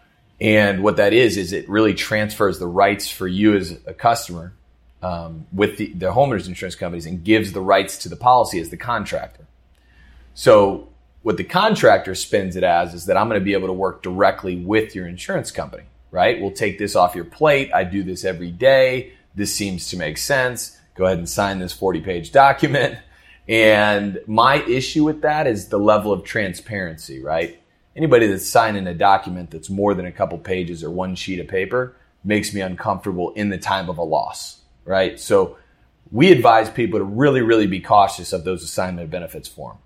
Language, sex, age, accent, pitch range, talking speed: English, male, 30-49, American, 90-110 Hz, 195 wpm